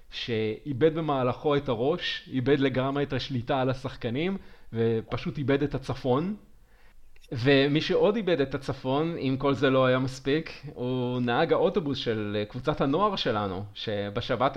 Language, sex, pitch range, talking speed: Hebrew, male, 120-155 Hz, 135 wpm